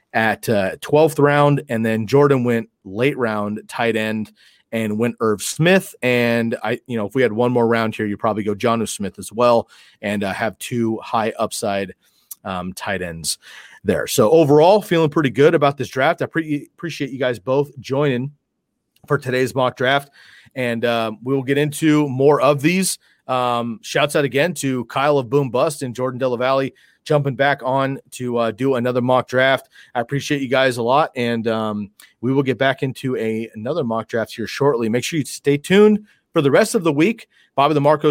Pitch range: 115-140 Hz